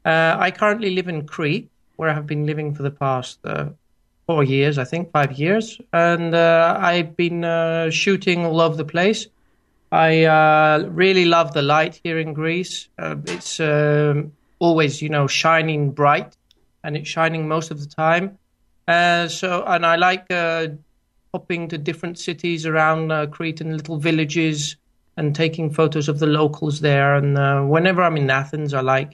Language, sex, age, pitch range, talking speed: English, male, 30-49, 145-170 Hz, 175 wpm